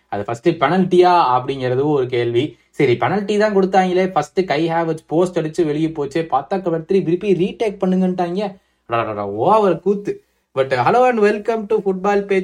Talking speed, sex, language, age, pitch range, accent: 75 wpm, male, Tamil, 30-49, 150-200 Hz, native